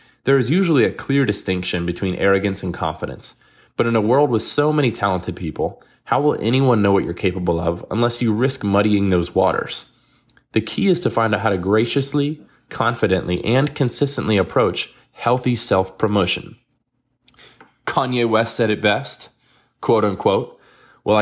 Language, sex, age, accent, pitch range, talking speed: English, male, 20-39, American, 95-125 Hz, 160 wpm